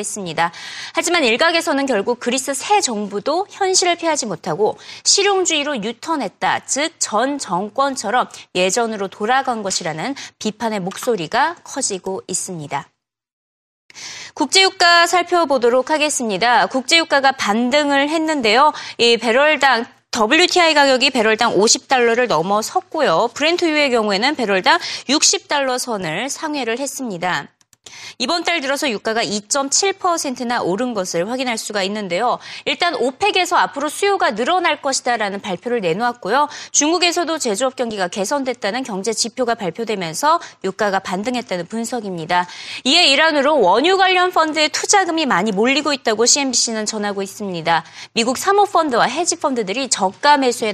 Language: Korean